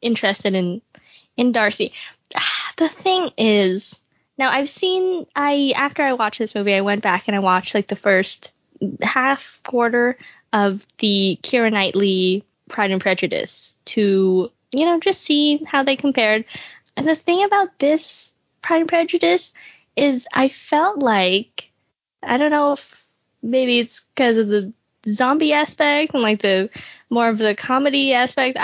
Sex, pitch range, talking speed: female, 200-285 Hz, 155 wpm